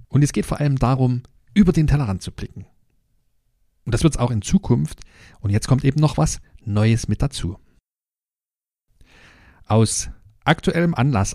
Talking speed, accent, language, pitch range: 160 wpm, German, German, 105-140 Hz